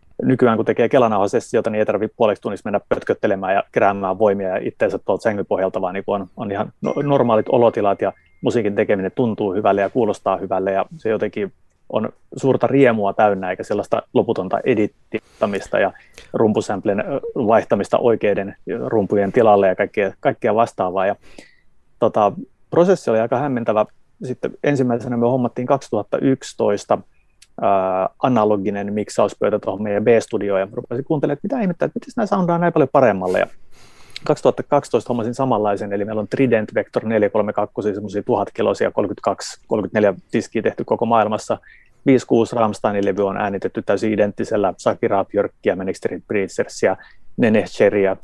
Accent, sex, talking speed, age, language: native, male, 135 wpm, 30-49, Finnish